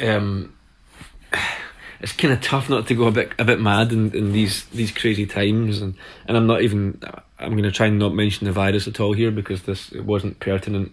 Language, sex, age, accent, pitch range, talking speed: Finnish, male, 20-39, British, 100-110 Hz, 225 wpm